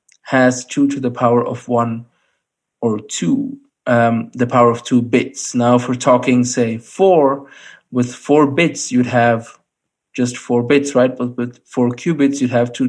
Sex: male